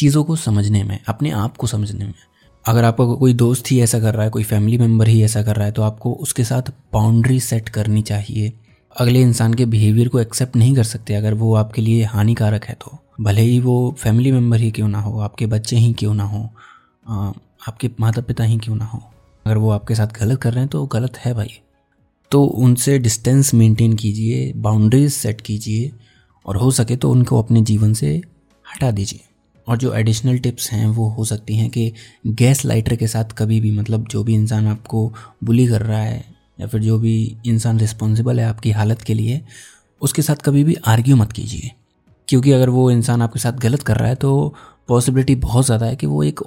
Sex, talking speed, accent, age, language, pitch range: male, 210 wpm, native, 20-39, Hindi, 110-125 Hz